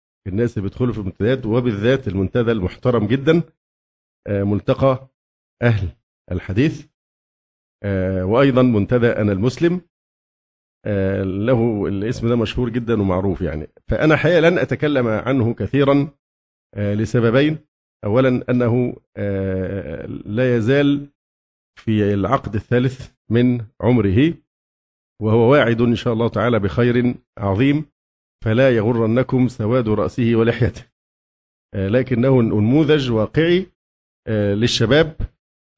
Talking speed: 90 wpm